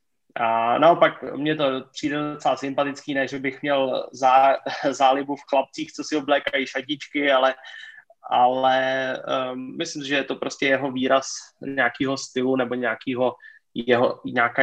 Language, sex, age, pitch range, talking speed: Slovak, male, 20-39, 130-145 Hz, 130 wpm